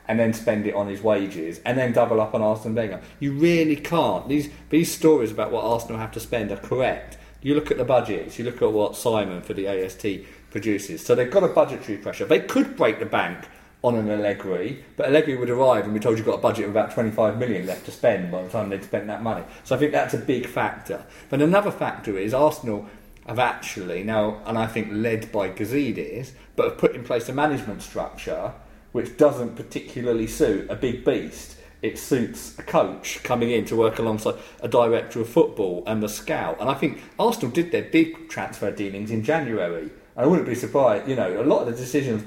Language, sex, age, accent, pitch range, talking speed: English, male, 40-59, British, 105-140 Hz, 220 wpm